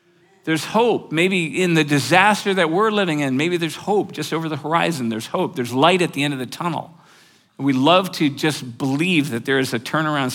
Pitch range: 130-165 Hz